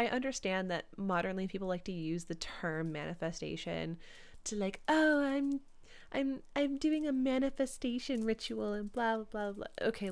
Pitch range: 170-215 Hz